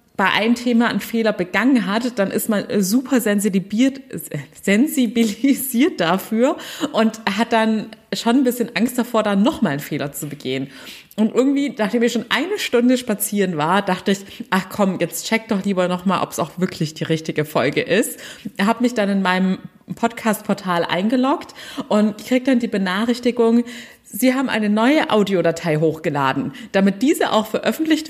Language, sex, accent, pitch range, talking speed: German, female, German, 190-255 Hz, 165 wpm